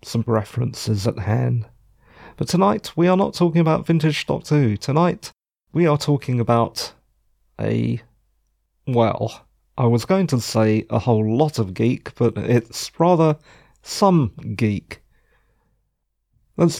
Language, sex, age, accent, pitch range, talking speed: English, male, 40-59, British, 110-155 Hz, 130 wpm